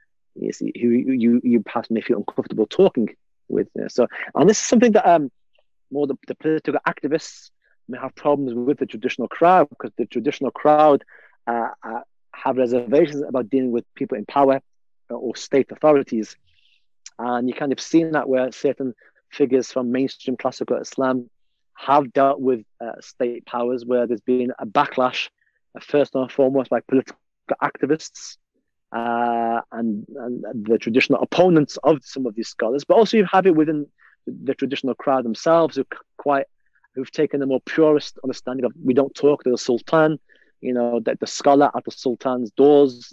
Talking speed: 170 wpm